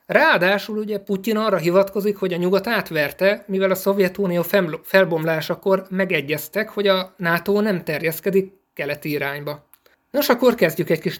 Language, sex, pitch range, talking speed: Hungarian, male, 160-195 Hz, 140 wpm